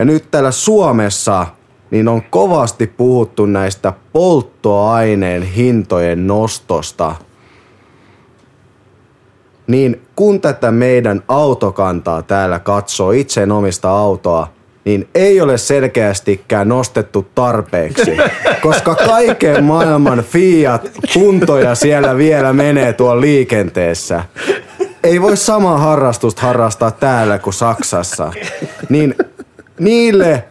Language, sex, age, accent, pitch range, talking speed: Finnish, male, 30-49, native, 110-145 Hz, 95 wpm